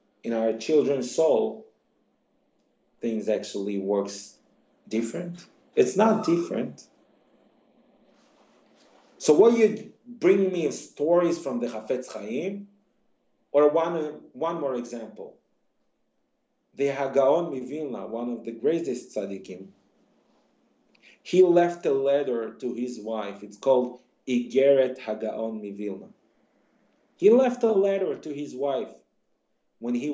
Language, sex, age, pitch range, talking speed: English, male, 40-59, 120-180 Hz, 110 wpm